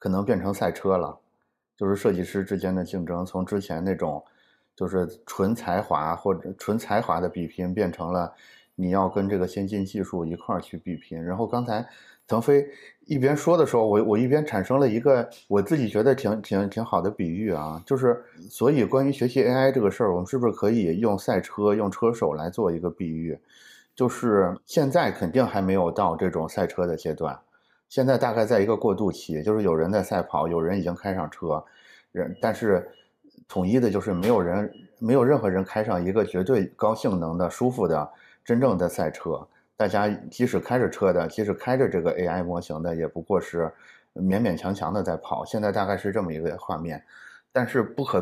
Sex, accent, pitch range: male, native, 90-110 Hz